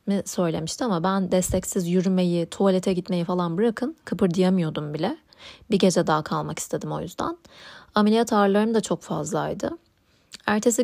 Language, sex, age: Turkish, female, 30-49